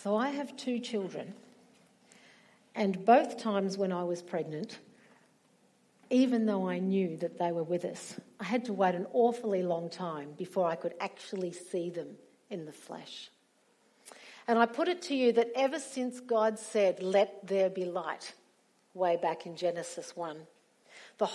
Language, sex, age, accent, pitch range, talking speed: English, female, 50-69, Australian, 190-245 Hz, 165 wpm